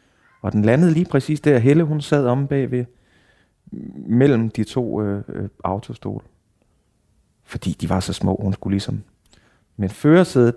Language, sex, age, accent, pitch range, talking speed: Danish, male, 30-49, native, 100-125 Hz, 155 wpm